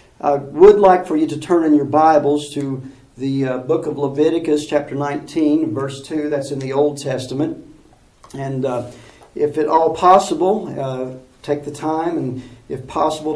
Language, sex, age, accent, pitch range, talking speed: English, male, 50-69, American, 130-155 Hz, 170 wpm